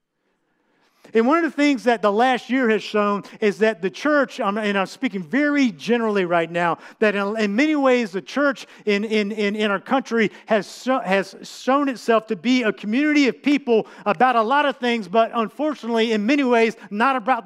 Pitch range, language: 215-260 Hz, English